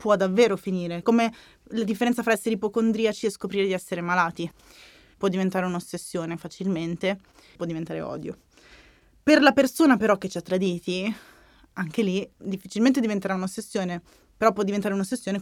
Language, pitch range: Italian, 185-225 Hz